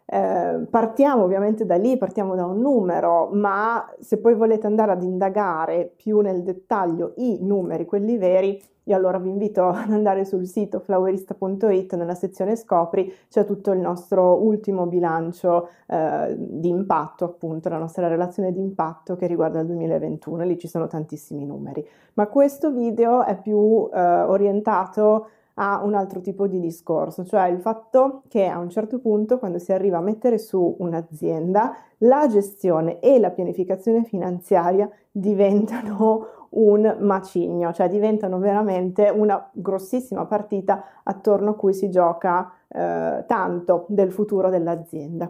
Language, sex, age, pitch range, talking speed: Italian, female, 20-39, 175-210 Hz, 150 wpm